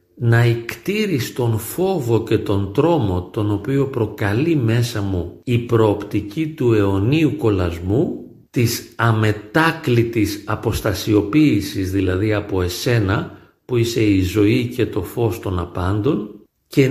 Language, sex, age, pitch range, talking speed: Greek, male, 50-69, 100-140 Hz, 115 wpm